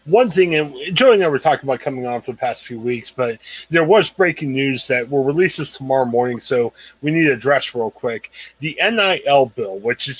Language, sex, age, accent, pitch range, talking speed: English, male, 30-49, American, 130-165 Hz, 230 wpm